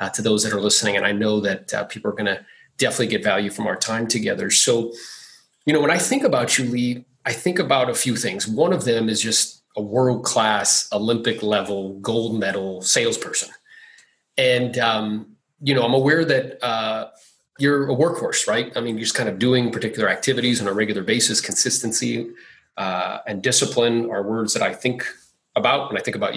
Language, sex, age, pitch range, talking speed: English, male, 30-49, 110-145 Hz, 200 wpm